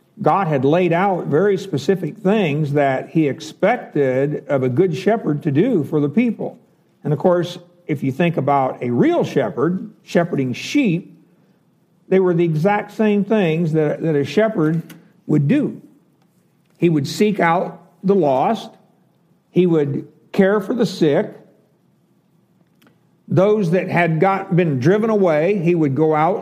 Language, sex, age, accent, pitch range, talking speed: English, male, 60-79, American, 150-185 Hz, 150 wpm